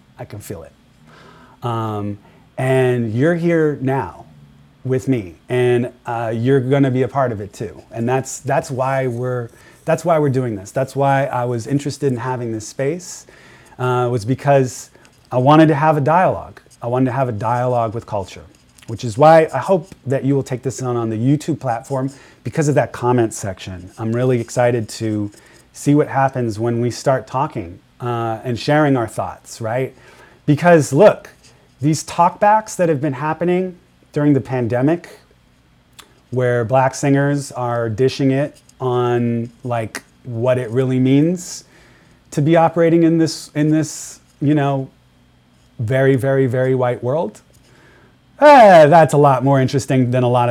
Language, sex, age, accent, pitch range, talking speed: English, male, 30-49, American, 120-145 Hz, 170 wpm